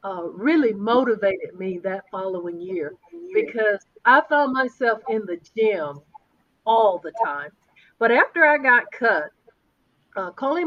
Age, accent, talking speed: 50-69, American, 135 wpm